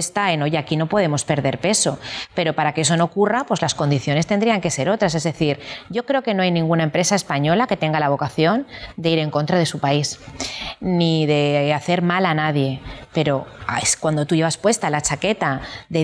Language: Spanish